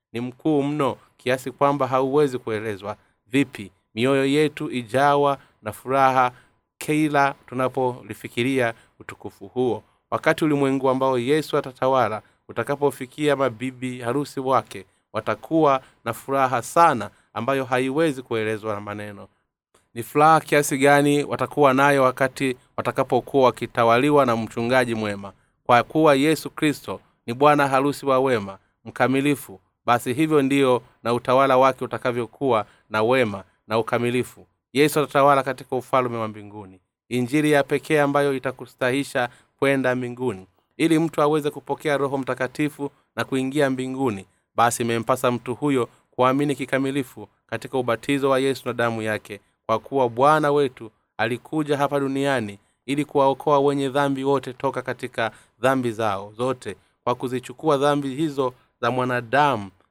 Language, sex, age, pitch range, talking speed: Swahili, male, 30-49, 115-140 Hz, 125 wpm